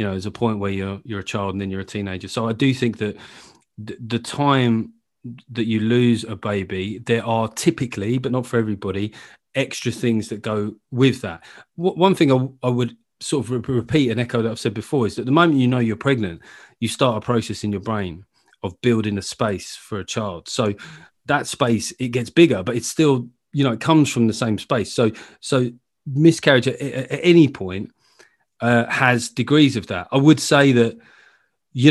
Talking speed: 215 wpm